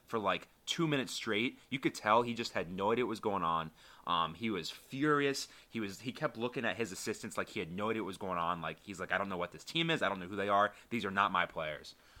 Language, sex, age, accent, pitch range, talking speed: English, male, 30-49, American, 85-110 Hz, 285 wpm